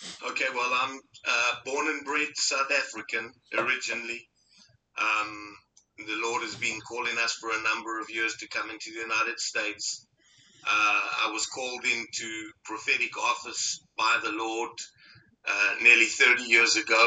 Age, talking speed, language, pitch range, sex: 50-69, 150 wpm, English, 110-130 Hz, male